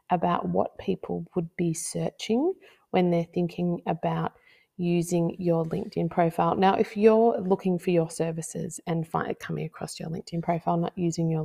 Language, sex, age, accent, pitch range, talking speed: English, female, 30-49, Australian, 165-185 Hz, 165 wpm